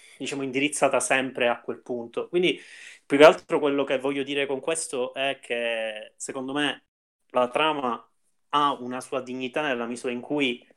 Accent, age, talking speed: native, 30-49, 165 wpm